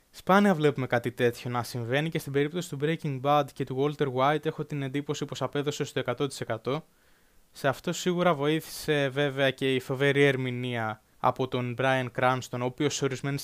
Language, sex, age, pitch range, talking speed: Greek, male, 20-39, 125-145 Hz, 180 wpm